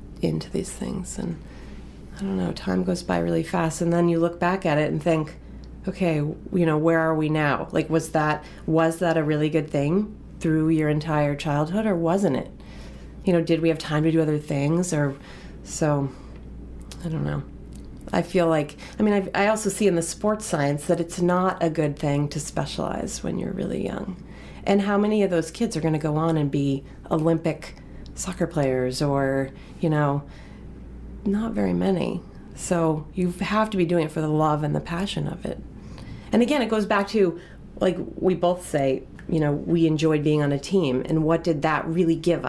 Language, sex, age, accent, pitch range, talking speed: English, female, 30-49, American, 150-190 Hz, 205 wpm